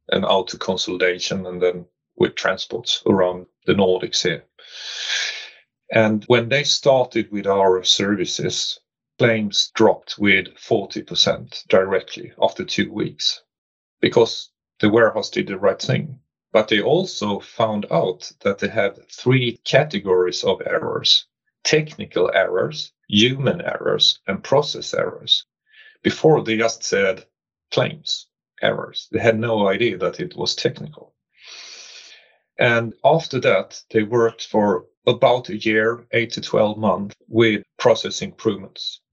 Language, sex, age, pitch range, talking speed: English, male, 40-59, 105-125 Hz, 125 wpm